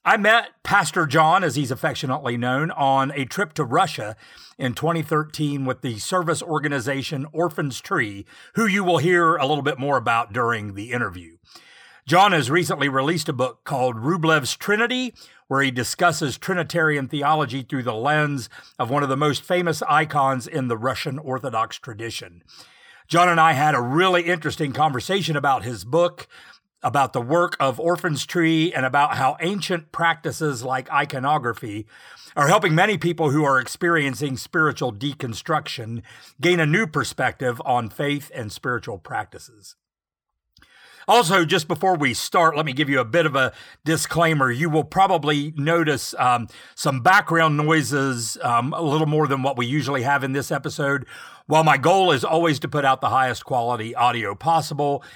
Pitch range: 130-165 Hz